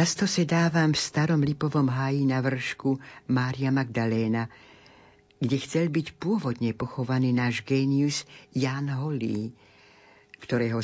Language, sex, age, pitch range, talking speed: Slovak, female, 60-79, 120-155 Hz, 110 wpm